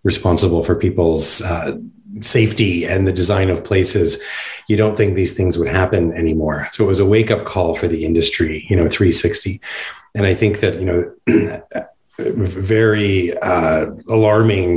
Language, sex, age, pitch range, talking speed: English, male, 30-49, 85-105 Hz, 165 wpm